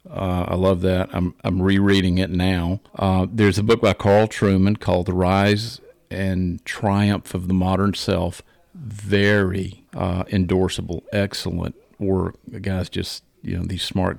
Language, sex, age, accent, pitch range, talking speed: English, male, 50-69, American, 90-105 Hz, 155 wpm